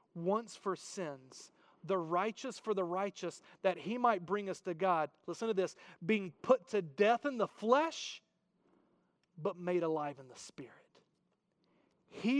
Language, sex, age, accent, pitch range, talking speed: English, male, 40-59, American, 170-210 Hz, 155 wpm